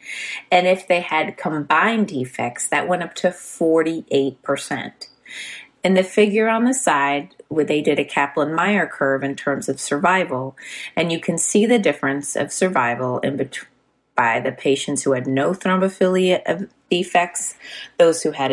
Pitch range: 140-190 Hz